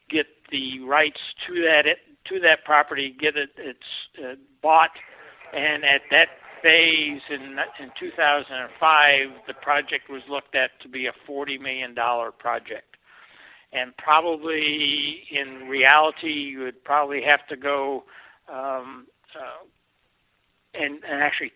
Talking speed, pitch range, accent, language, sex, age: 130 wpm, 130-150 Hz, American, English, male, 60-79